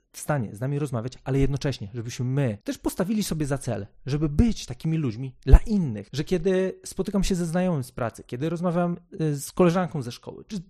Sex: male